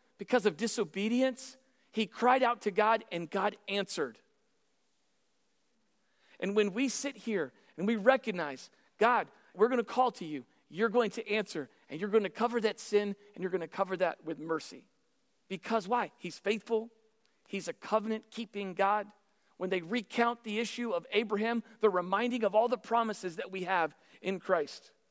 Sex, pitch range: male, 170-225 Hz